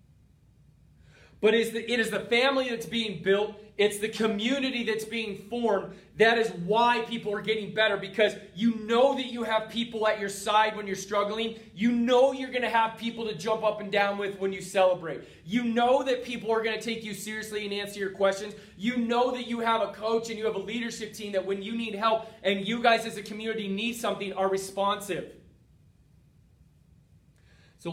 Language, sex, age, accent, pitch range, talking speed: English, male, 30-49, American, 195-225 Hz, 200 wpm